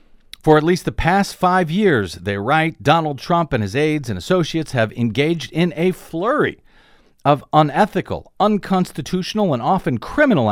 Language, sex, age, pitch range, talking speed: English, male, 50-69, 120-180 Hz, 155 wpm